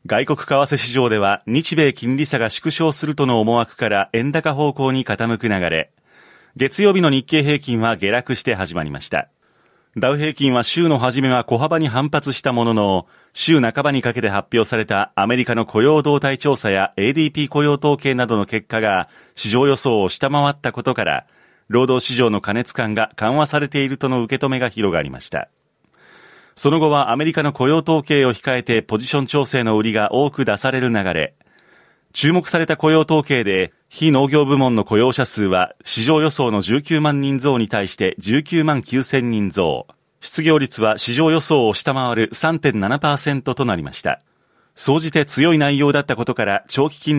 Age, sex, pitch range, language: 40-59, male, 115-145 Hz, Japanese